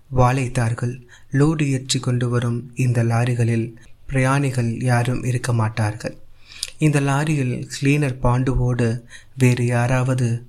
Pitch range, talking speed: 115-130 Hz, 95 wpm